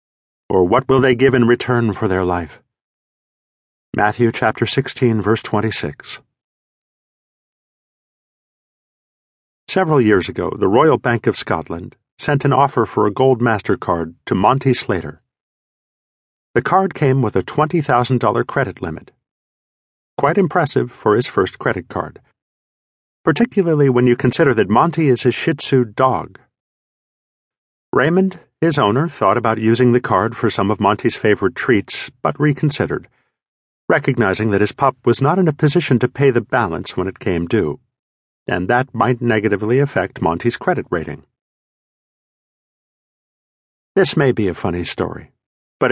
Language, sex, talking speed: English, male, 140 wpm